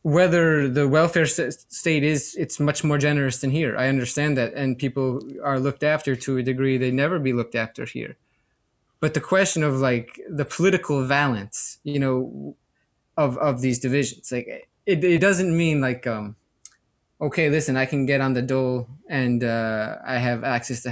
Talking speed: 180 wpm